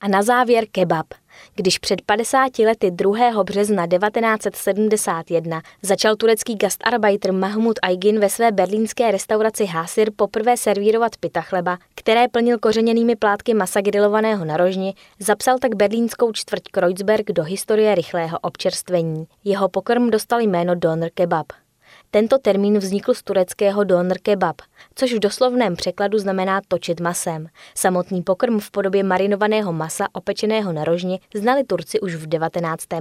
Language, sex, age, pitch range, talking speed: Czech, female, 20-39, 180-220 Hz, 140 wpm